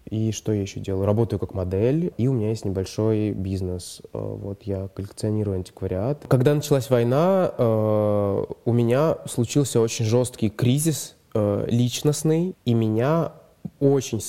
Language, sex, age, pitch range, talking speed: Russian, male, 20-39, 105-130 Hz, 130 wpm